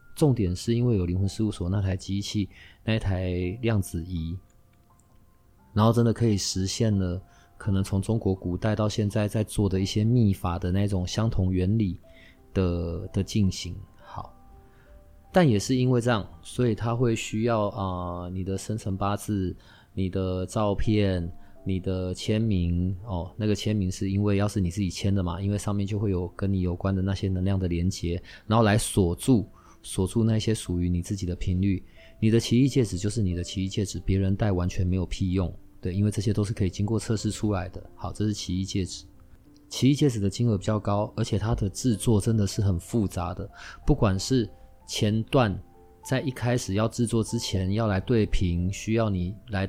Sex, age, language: male, 20-39, Chinese